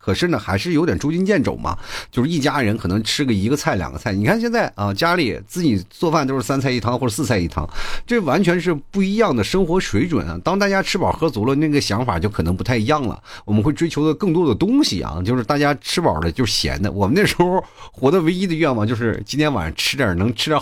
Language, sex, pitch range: Chinese, male, 105-170 Hz